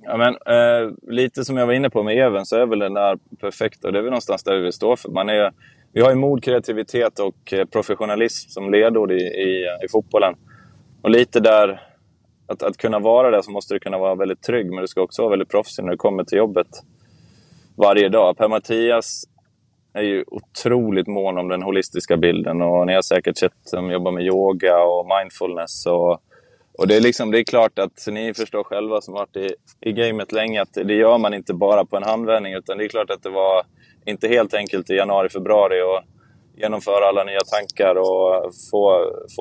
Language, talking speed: Swedish, 205 wpm